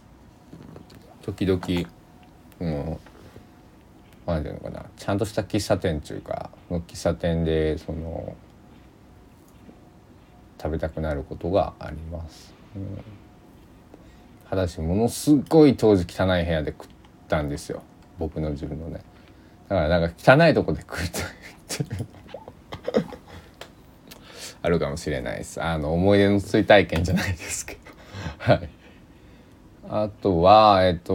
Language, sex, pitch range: Japanese, male, 80-100 Hz